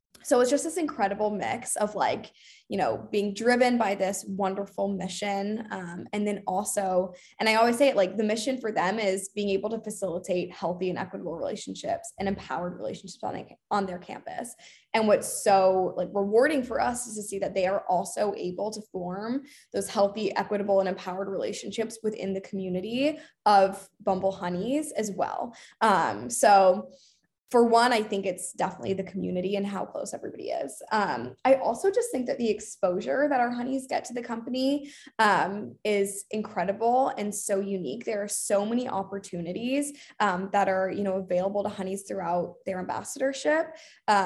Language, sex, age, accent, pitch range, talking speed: English, female, 10-29, American, 190-235 Hz, 175 wpm